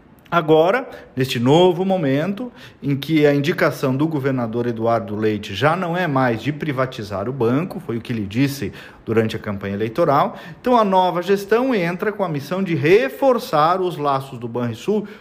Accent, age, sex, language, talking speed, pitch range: Brazilian, 40-59, male, Portuguese, 170 wpm, 135-205 Hz